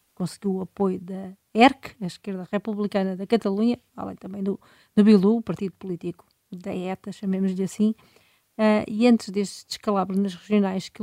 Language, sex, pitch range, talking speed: Portuguese, female, 195-220 Hz, 165 wpm